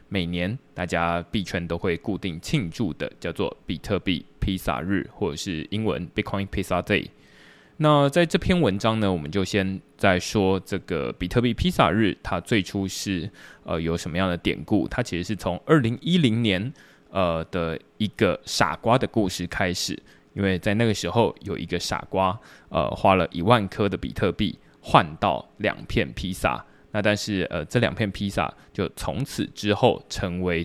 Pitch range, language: 90-110 Hz, Chinese